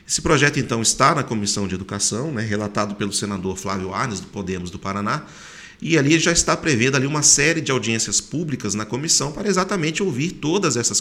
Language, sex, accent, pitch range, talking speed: Portuguese, male, Brazilian, 105-160 Hz, 190 wpm